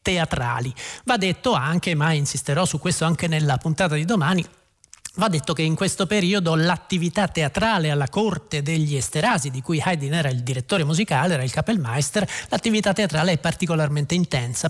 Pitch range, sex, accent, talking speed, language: 155-200 Hz, male, native, 165 wpm, Italian